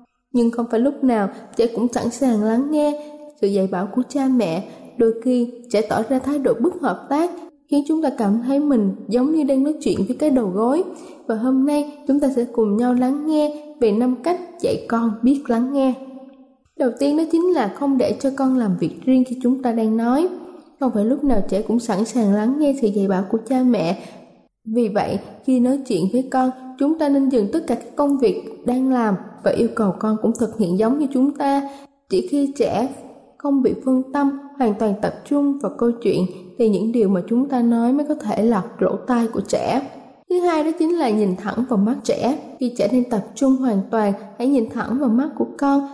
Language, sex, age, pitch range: Thai, female, 10-29, 225-280 Hz